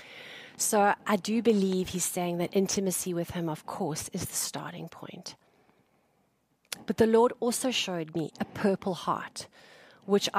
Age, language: 40-59, English